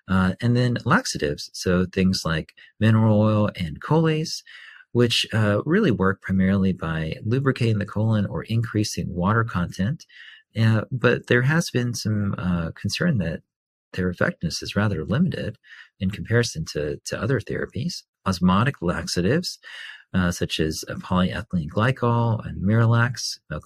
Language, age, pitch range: English, 40-59, 90-115 Hz